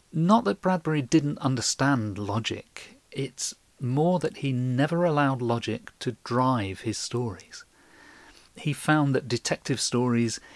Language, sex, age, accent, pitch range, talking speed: English, male, 40-59, British, 100-135 Hz, 125 wpm